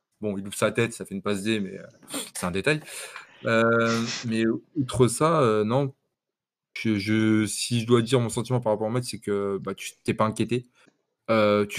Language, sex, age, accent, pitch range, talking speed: French, male, 20-39, French, 100-120 Hz, 215 wpm